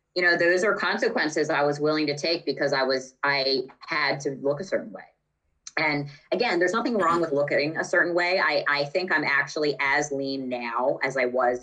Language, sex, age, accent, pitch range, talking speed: English, female, 20-39, American, 125-165 Hz, 210 wpm